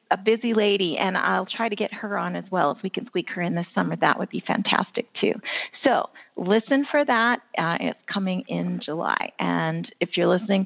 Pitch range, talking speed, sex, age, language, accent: 180-210 Hz, 215 wpm, female, 40-59, English, American